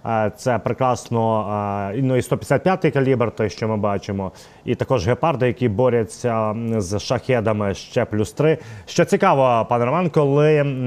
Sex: male